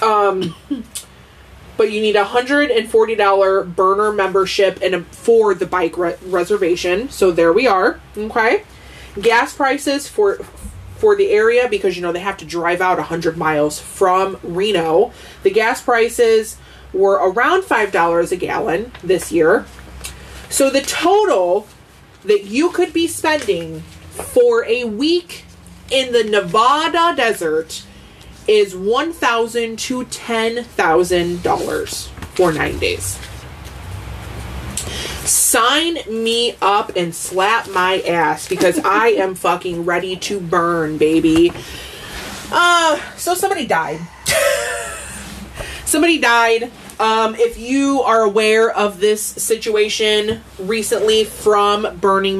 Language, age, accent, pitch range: English, 30-49, American, 180-285 Hz